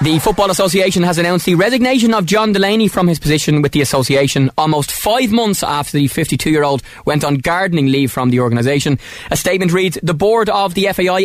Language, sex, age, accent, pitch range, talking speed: English, male, 20-39, Irish, 140-180 Hz, 195 wpm